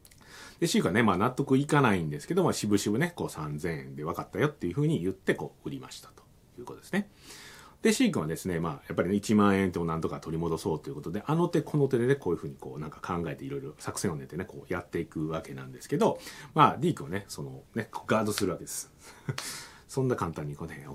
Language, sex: Japanese, male